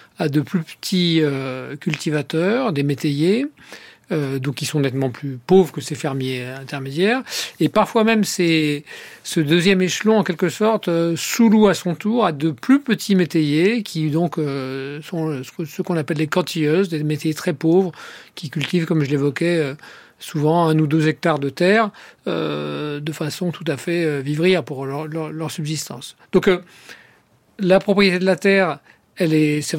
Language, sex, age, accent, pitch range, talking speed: French, male, 40-59, French, 150-185 Hz, 175 wpm